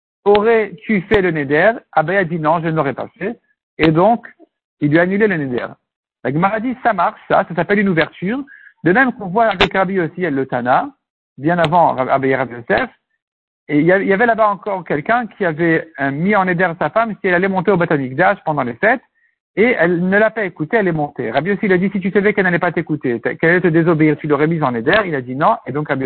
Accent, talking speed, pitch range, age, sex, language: French, 240 wpm, 160-220 Hz, 60-79, male, French